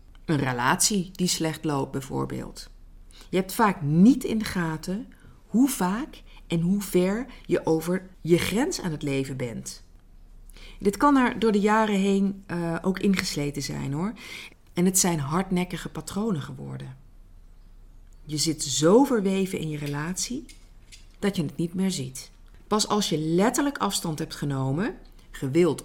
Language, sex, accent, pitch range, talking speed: Dutch, female, Dutch, 140-205 Hz, 150 wpm